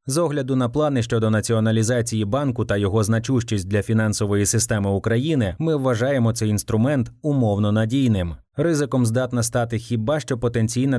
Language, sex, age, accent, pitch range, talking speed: Ukrainian, male, 20-39, native, 110-135 Hz, 140 wpm